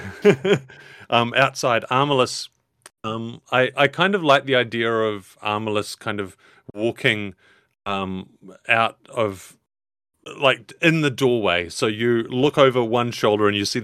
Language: English